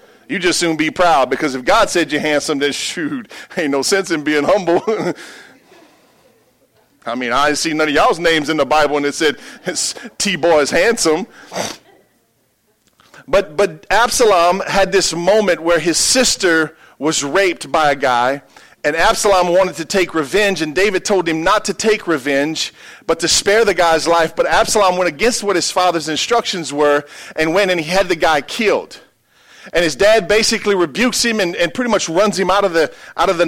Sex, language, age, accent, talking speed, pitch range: male, English, 40-59, American, 190 wpm, 160-210 Hz